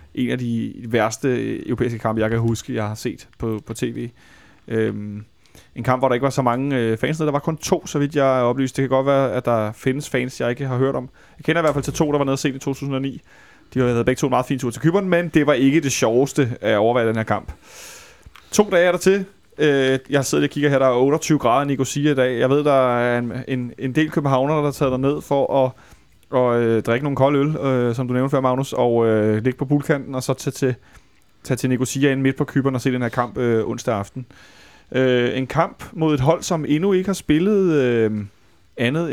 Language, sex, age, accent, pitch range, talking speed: Danish, male, 30-49, native, 120-150 Hz, 245 wpm